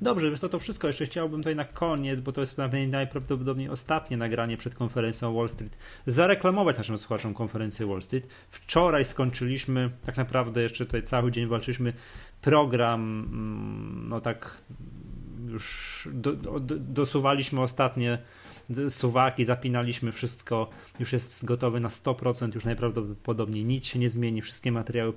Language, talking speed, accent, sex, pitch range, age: Polish, 135 wpm, native, male, 110-130 Hz, 30-49